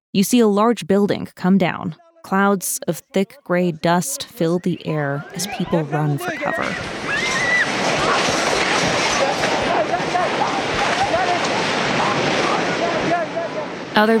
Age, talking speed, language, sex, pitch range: 20-39, 90 wpm, English, female, 165-200 Hz